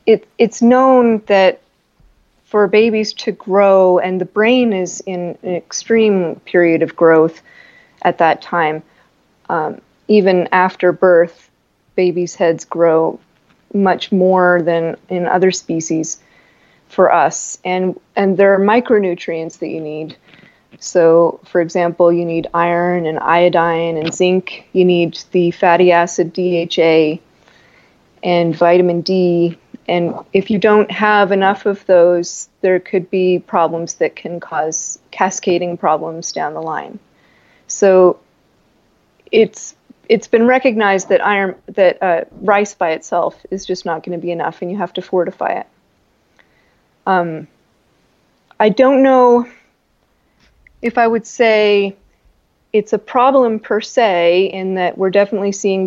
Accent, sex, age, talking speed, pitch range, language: American, female, 30-49, 135 wpm, 170-210 Hz, English